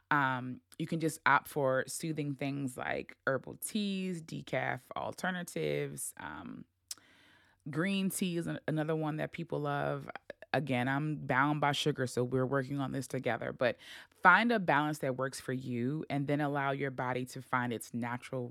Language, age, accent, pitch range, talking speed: English, 20-39, American, 130-160 Hz, 160 wpm